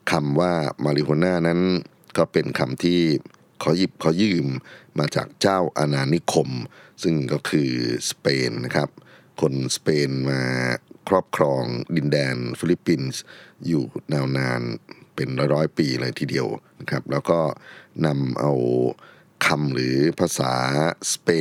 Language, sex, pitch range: Thai, male, 65-85 Hz